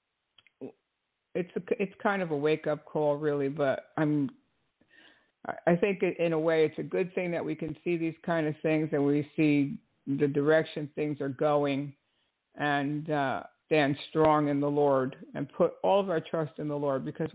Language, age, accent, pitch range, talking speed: English, 50-69, American, 145-165 Hz, 185 wpm